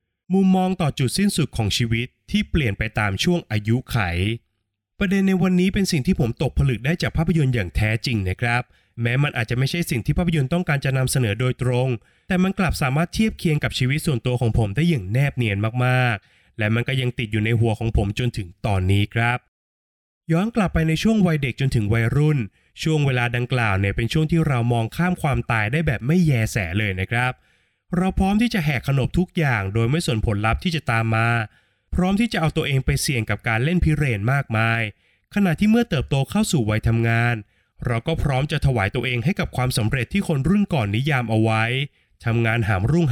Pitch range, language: 115-160 Hz, Thai